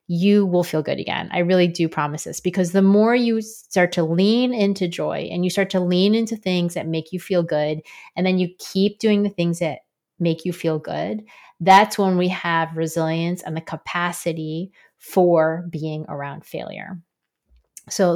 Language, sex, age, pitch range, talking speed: English, female, 30-49, 165-205 Hz, 185 wpm